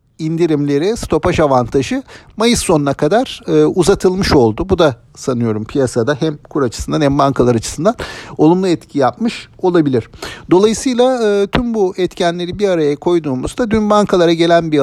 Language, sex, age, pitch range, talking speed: Turkish, male, 50-69, 135-180 Hz, 140 wpm